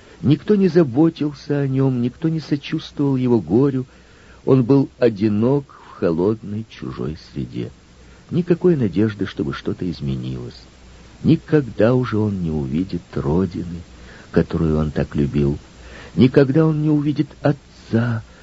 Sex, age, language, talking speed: male, 50-69, Russian, 120 wpm